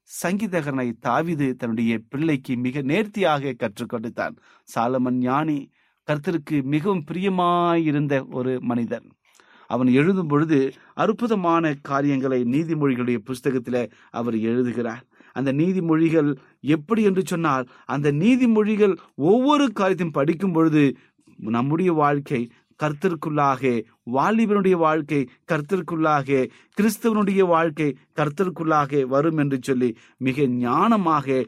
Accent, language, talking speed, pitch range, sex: native, Tamil, 95 wpm, 125-185 Hz, male